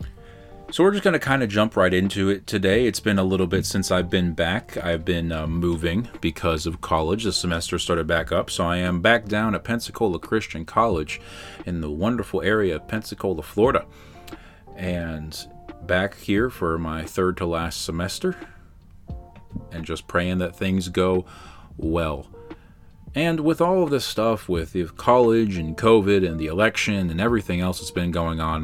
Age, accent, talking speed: 30-49, American, 180 wpm